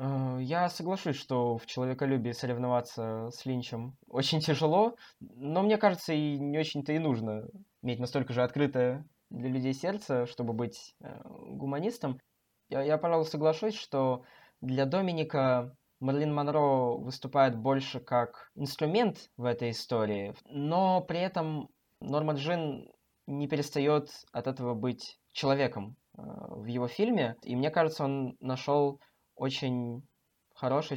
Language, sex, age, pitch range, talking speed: Russian, male, 20-39, 120-145 Hz, 125 wpm